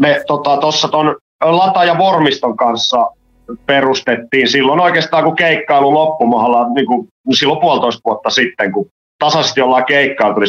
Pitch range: 110-145 Hz